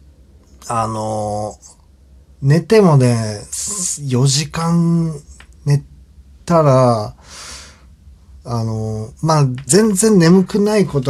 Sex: male